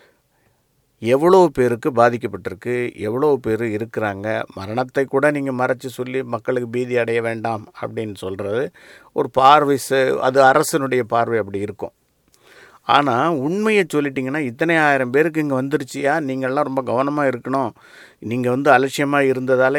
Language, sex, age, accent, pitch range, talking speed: Tamil, male, 50-69, native, 110-140 Hz, 120 wpm